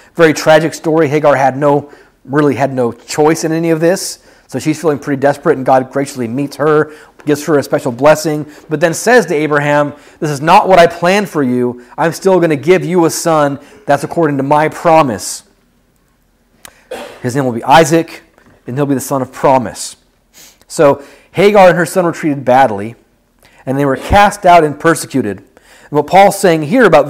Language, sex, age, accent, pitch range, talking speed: English, male, 40-59, American, 140-170 Hz, 195 wpm